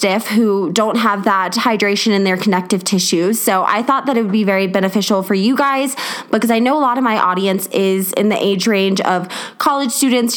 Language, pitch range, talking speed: English, 200-245 Hz, 215 wpm